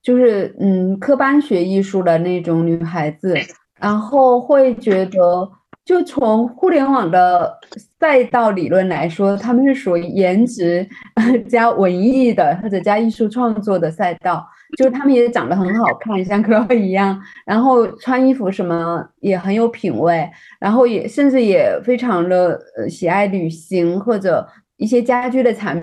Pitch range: 190-255 Hz